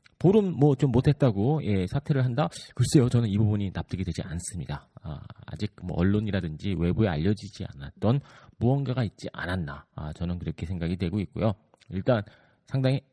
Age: 40-59